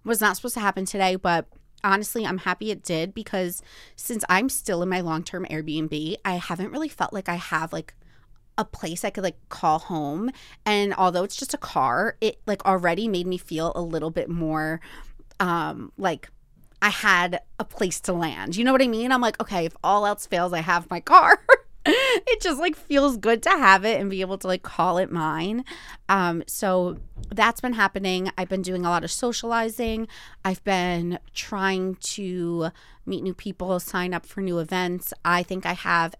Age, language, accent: 20-39, English, American